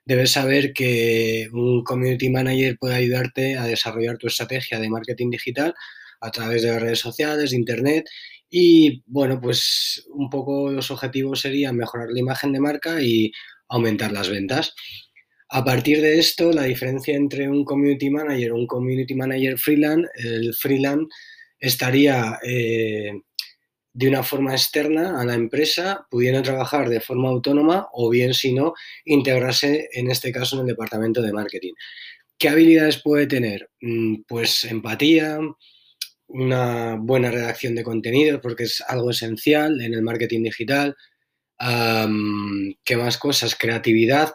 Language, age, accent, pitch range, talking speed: Spanish, 20-39, Spanish, 115-145 Hz, 145 wpm